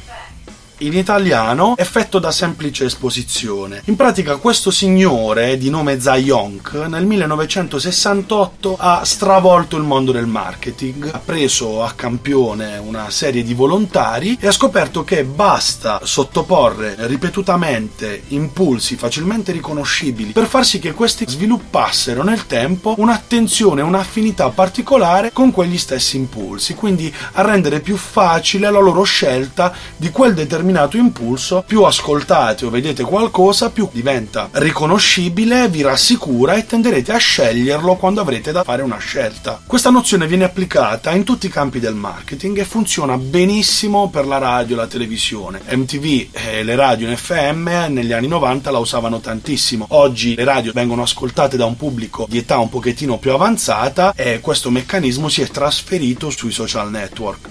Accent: native